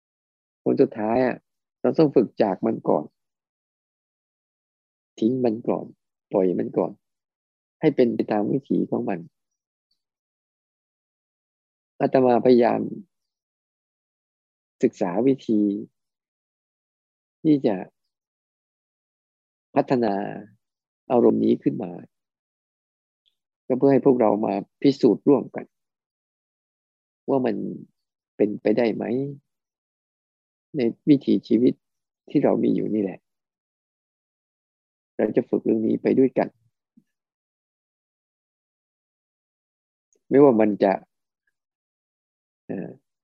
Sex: male